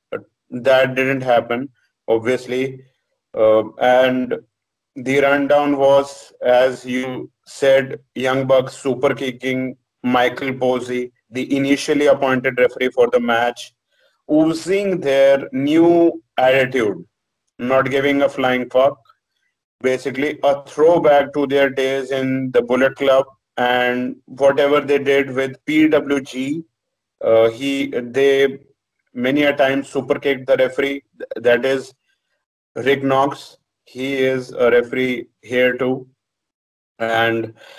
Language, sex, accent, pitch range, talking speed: English, male, Indian, 130-150 Hz, 115 wpm